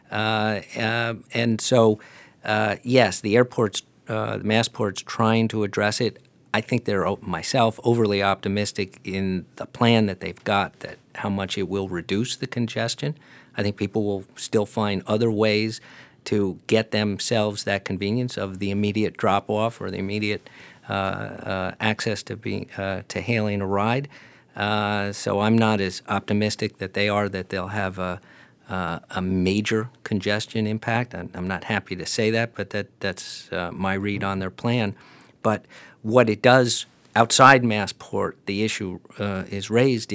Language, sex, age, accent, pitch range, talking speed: English, male, 50-69, American, 100-115 Hz, 165 wpm